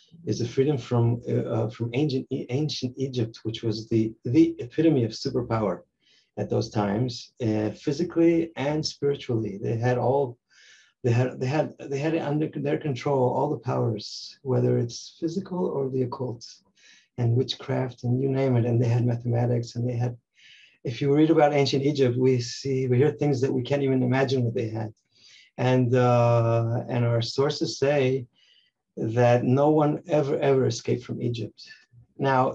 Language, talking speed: German, 170 wpm